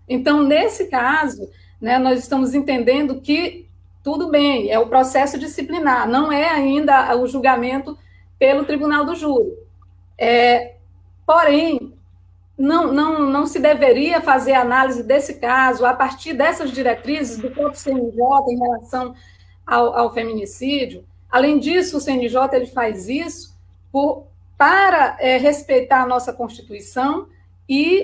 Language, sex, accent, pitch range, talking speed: Portuguese, female, Brazilian, 240-290 Hz, 120 wpm